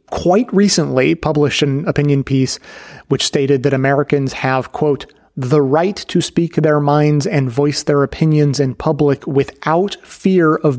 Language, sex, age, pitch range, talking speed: English, male, 30-49, 130-155 Hz, 150 wpm